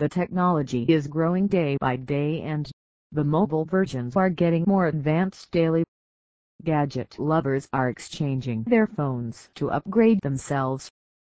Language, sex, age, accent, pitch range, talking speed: English, female, 40-59, American, 140-180 Hz, 135 wpm